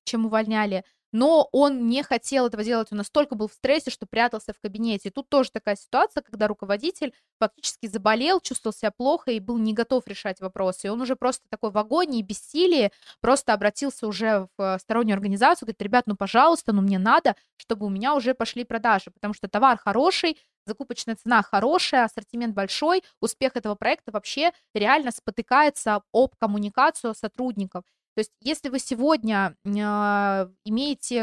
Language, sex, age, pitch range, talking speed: Russian, female, 20-39, 205-260 Hz, 165 wpm